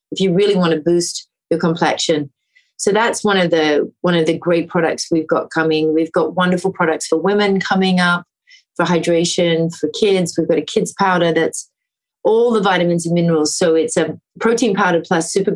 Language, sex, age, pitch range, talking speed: English, female, 30-49, 160-190 Hz, 195 wpm